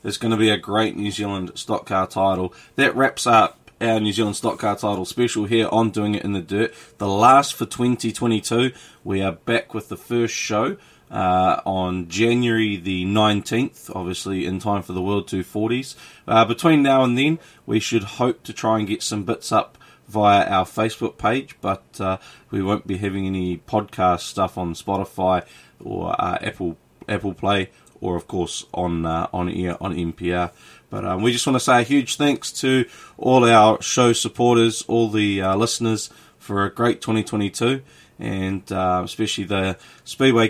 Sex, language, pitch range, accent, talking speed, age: male, English, 95-115 Hz, Australian, 180 wpm, 20-39